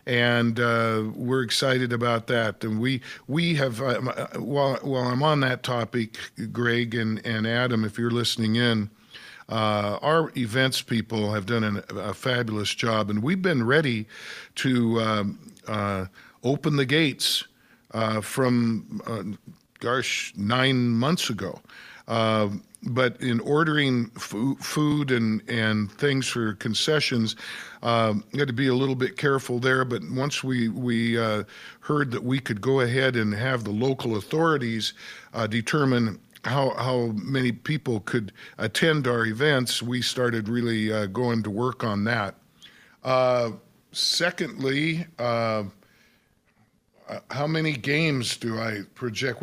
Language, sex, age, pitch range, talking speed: English, male, 50-69, 110-135 Hz, 140 wpm